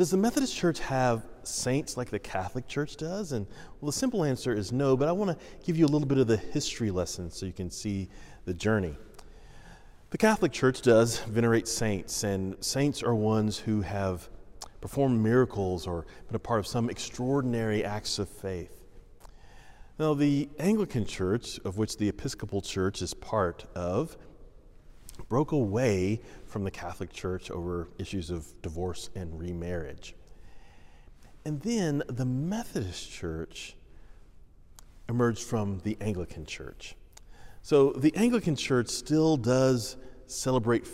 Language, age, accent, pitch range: English, 40-59, American, 95-130 Hz